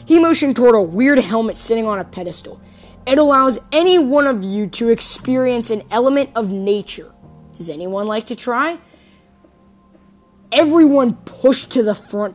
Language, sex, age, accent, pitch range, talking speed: English, female, 10-29, American, 190-240 Hz, 155 wpm